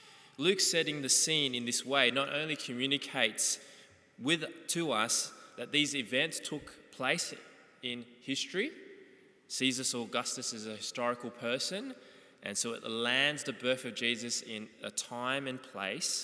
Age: 20-39